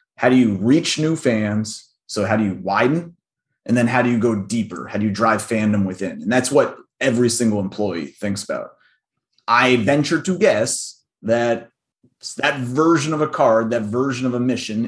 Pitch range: 105-125 Hz